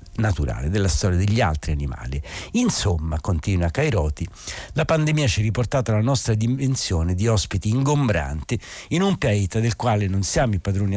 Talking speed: 160 wpm